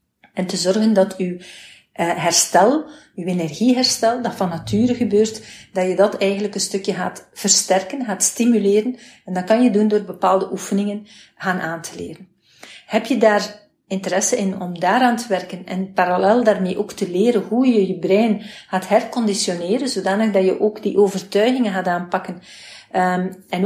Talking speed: 160 wpm